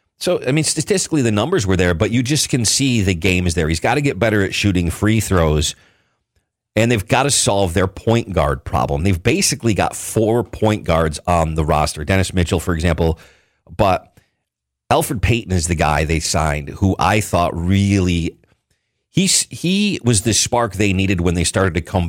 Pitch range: 85-105 Hz